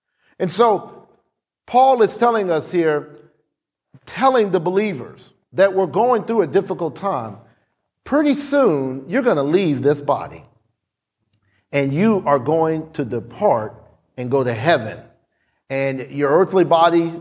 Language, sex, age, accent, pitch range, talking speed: English, male, 50-69, American, 140-200 Hz, 135 wpm